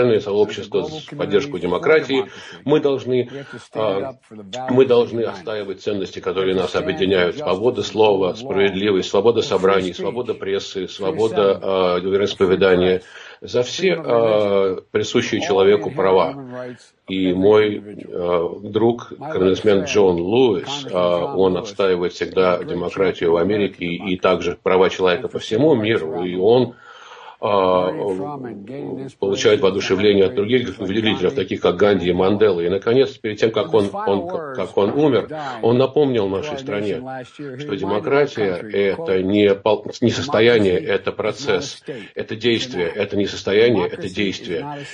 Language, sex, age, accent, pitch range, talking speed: Russian, male, 50-69, native, 95-140 Hz, 125 wpm